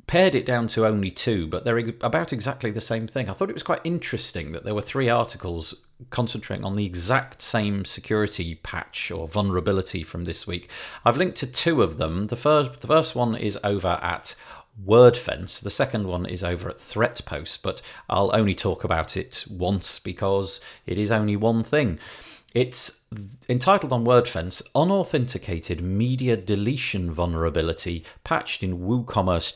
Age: 40-59